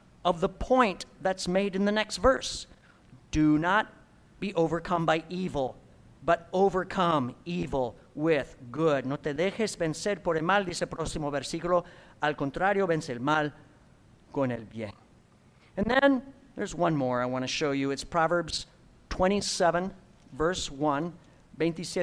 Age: 50-69